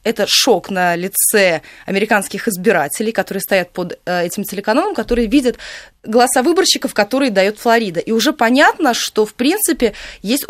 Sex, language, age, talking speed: female, Russian, 20-39, 145 wpm